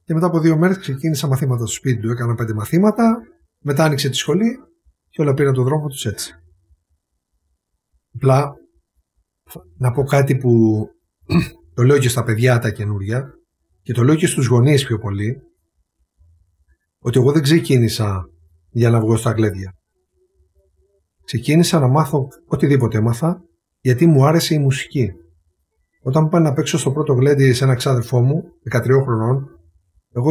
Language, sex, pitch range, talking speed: Greek, male, 95-150 Hz, 155 wpm